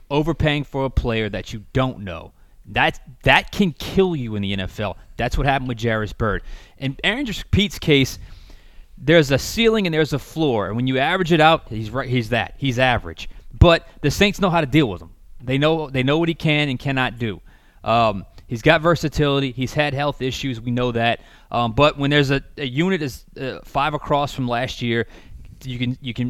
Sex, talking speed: male, 210 wpm